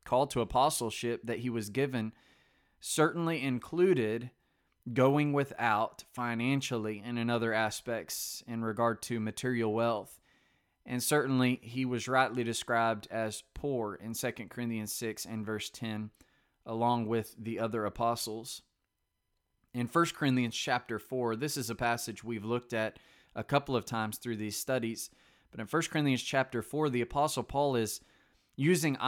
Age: 20-39